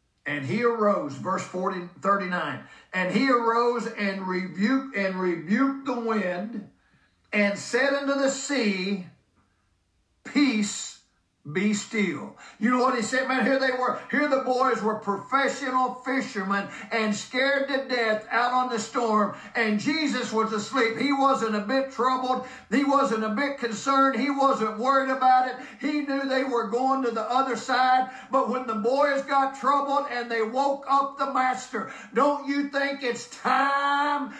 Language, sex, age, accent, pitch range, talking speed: English, male, 50-69, American, 230-280 Hz, 155 wpm